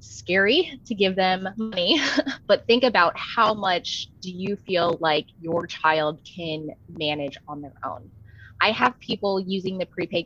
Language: English